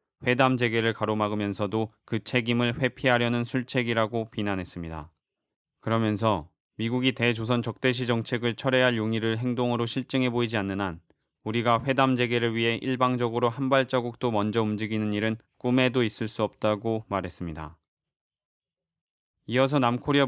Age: 20-39